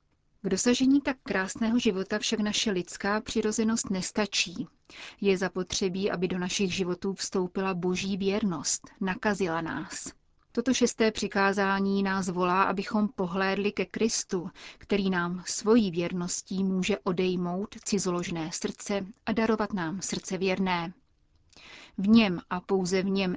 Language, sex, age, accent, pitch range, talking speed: Czech, female, 30-49, native, 180-210 Hz, 125 wpm